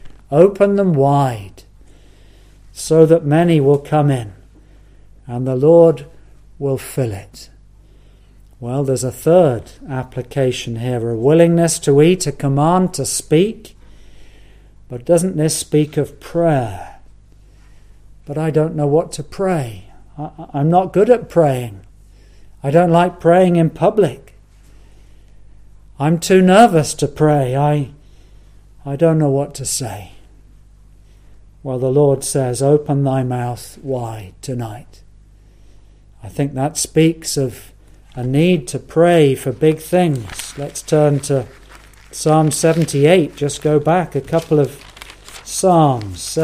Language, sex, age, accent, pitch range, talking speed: English, male, 50-69, British, 115-160 Hz, 125 wpm